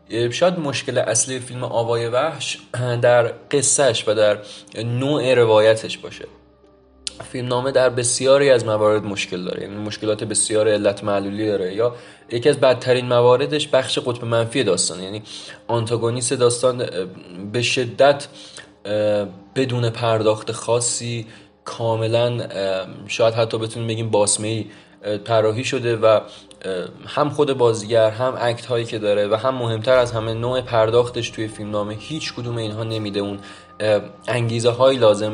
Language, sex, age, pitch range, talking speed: Persian, male, 20-39, 105-125 Hz, 130 wpm